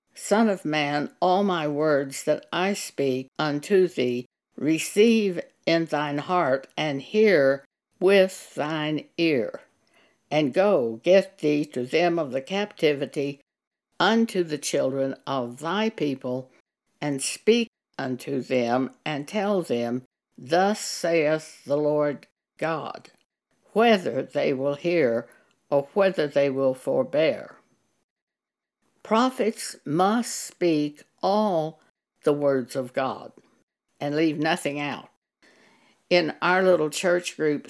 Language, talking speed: English, 115 wpm